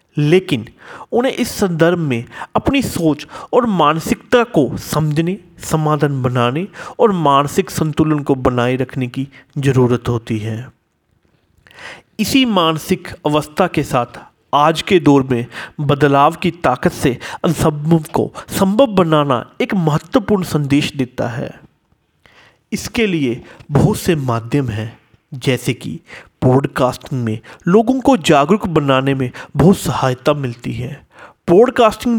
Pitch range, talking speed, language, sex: 130-185 Hz, 120 wpm, Hindi, male